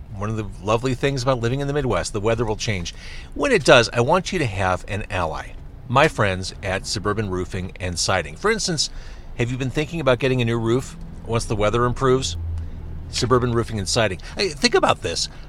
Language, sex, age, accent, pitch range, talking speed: English, male, 40-59, American, 105-145 Hz, 205 wpm